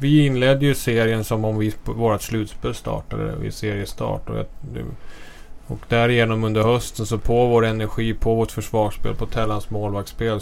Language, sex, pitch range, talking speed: English, male, 105-120 Hz, 145 wpm